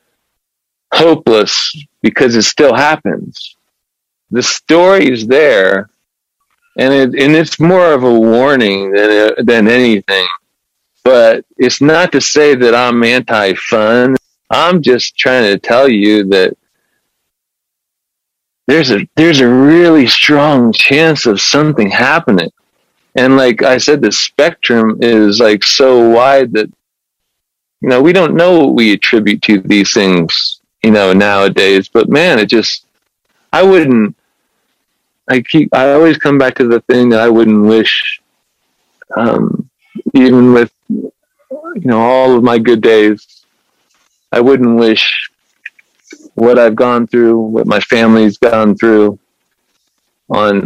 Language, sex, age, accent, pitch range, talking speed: English, male, 40-59, American, 105-135 Hz, 135 wpm